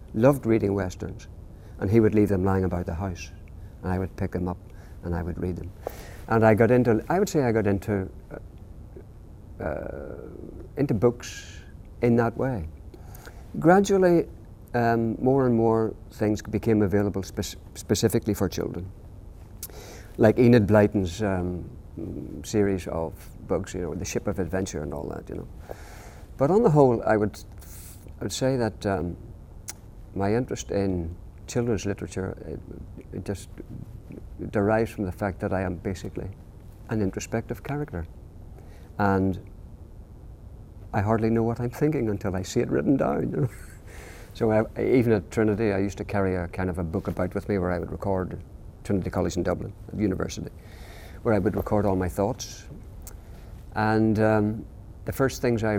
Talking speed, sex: 160 wpm, male